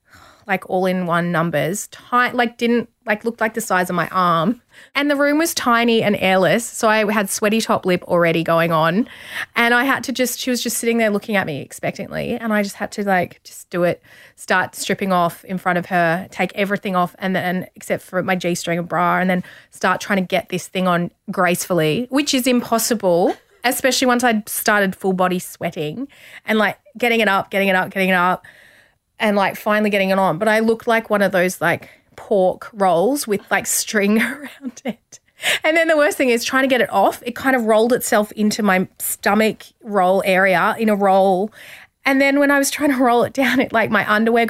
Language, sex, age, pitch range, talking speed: English, female, 20-39, 185-240 Hz, 215 wpm